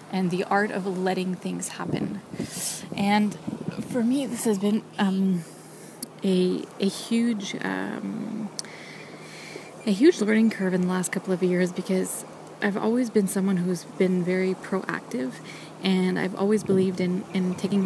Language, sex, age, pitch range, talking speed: English, female, 20-39, 180-205 Hz, 150 wpm